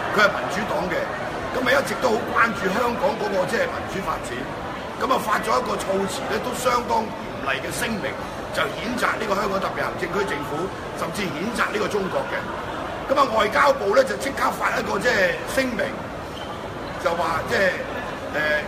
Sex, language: male, Chinese